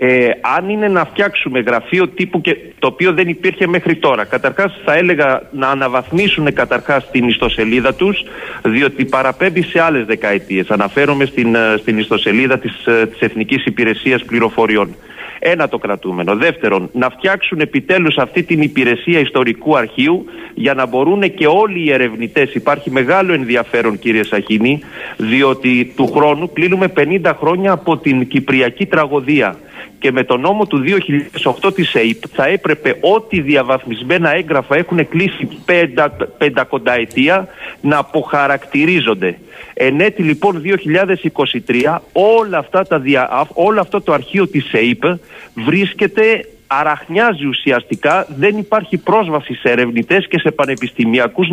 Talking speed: 130 wpm